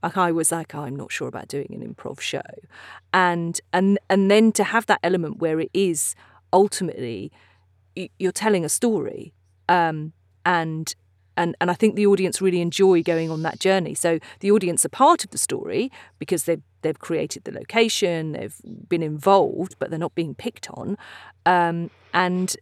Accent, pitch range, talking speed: British, 160-195 Hz, 180 wpm